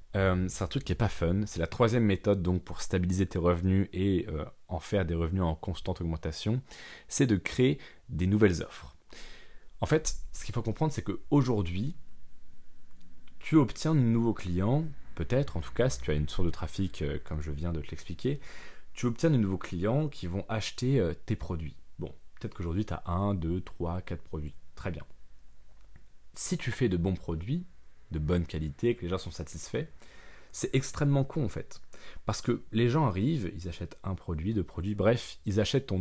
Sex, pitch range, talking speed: male, 85-115 Hz, 200 wpm